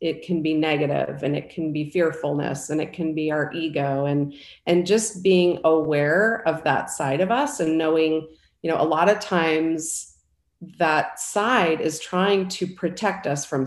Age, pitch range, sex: 40-59, 155-190 Hz, female